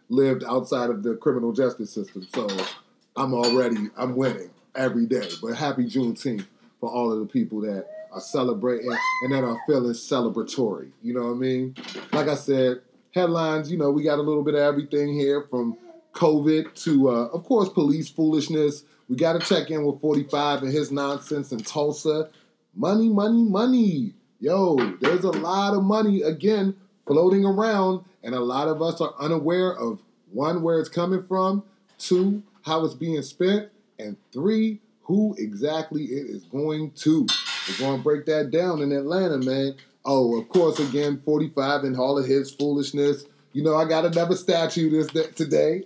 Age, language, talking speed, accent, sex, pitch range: 30-49, English, 175 wpm, American, male, 140-185 Hz